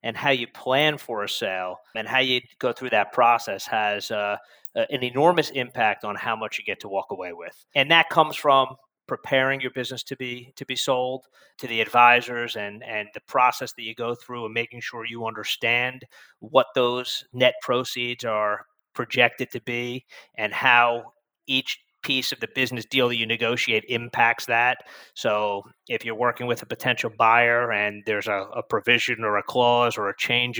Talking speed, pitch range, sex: 190 wpm, 110-130 Hz, male